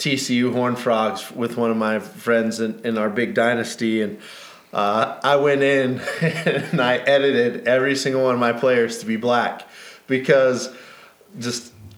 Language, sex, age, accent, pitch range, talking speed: English, male, 20-39, American, 115-135 Hz, 160 wpm